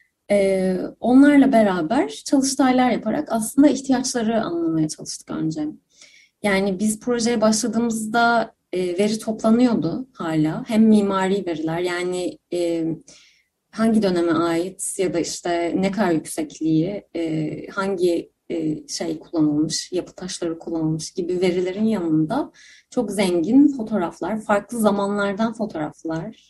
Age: 30-49